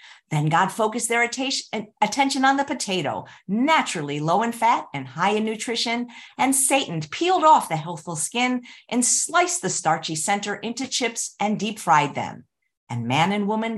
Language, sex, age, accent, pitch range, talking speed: English, female, 50-69, American, 170-255 Hz, 165 wpm